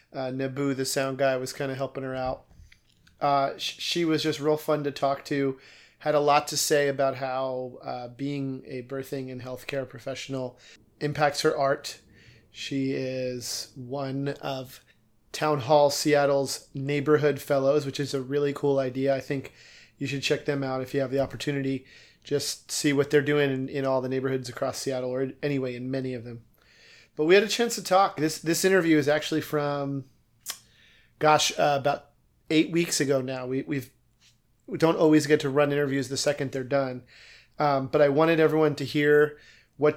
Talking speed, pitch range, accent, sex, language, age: 185 wpm, 135-150 Hz, American, male, English, 30-49